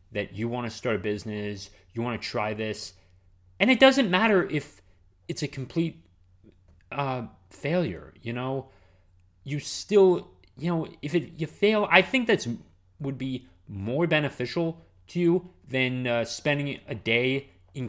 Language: English